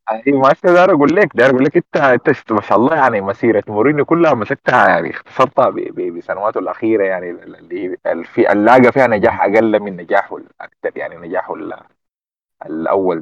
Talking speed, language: 160 wpm, Arabic